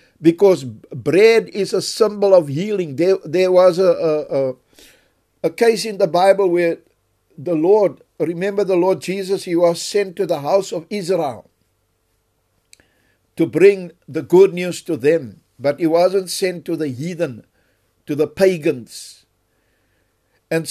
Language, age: English, 60-79